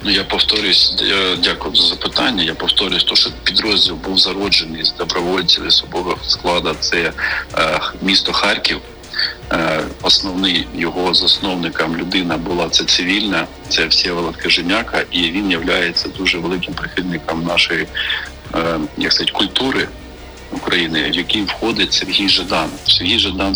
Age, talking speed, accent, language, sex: 40-59, 130 wpm, native, Ukrainian, male